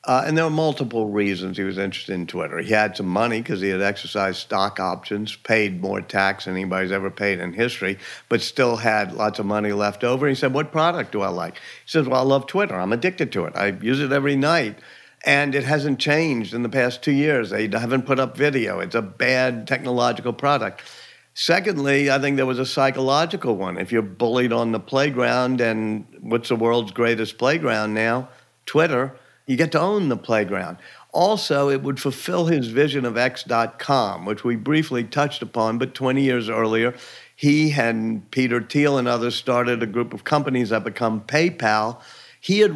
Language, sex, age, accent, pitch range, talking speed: English, male, 50-69, American, 110-135 Hz, 195 wpm